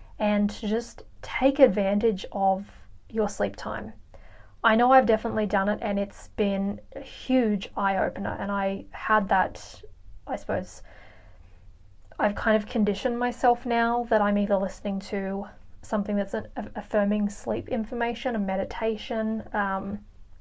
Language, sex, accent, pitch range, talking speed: English, female, Australian, 195-235 Hz, 135 wpm